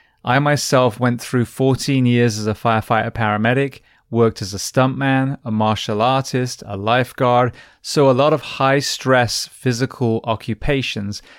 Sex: male